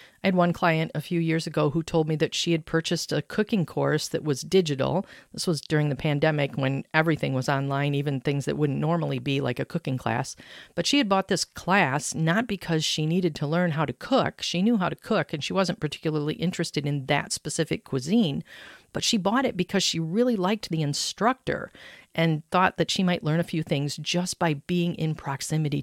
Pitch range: 150-190 Hz